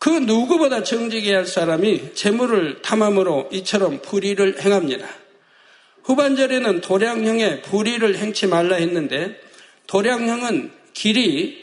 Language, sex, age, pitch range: Korean, male, 60-79, 175-225 Hz